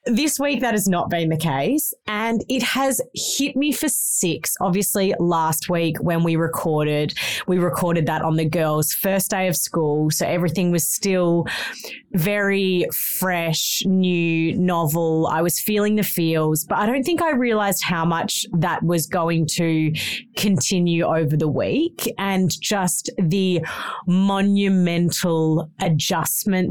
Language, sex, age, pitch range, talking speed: English, female, 30-49, 165-200 Hz, 145 wpm